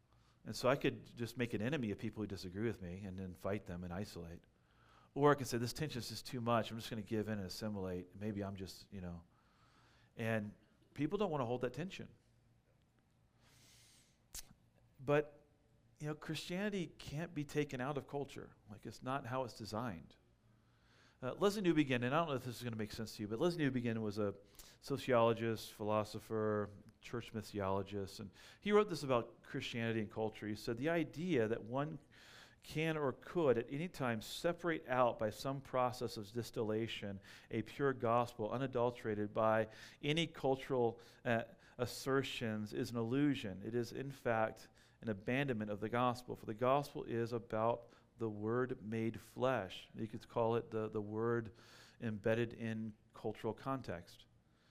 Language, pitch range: English, 110-130 Hz